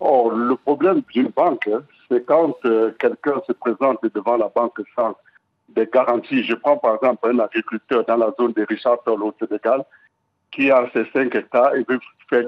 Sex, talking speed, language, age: male, 195 wpm, French, 60-79